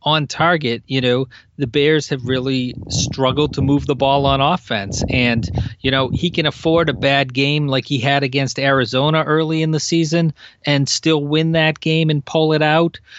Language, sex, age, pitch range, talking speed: English, male, 40-59, 125-155 Hz, 190 wpm